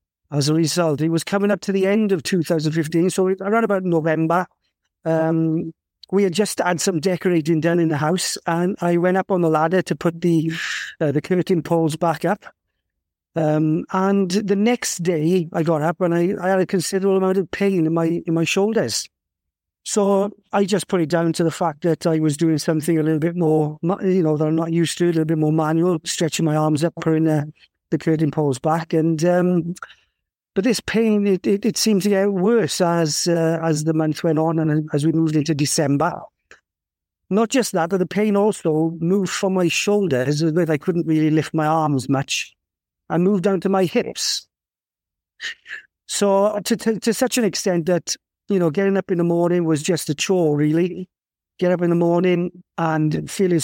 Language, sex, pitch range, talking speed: English, male, 160-190 Hz, 205 wpm